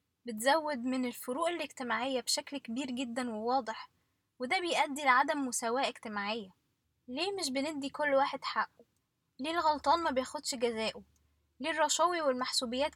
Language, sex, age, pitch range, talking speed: Arabic, female, 10-29, 240-295 Hz, 125 wpm